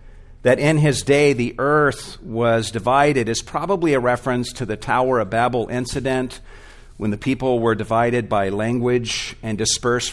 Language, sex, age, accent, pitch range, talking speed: English, male, 50-69, American, 105-130 Hz, 160 wpm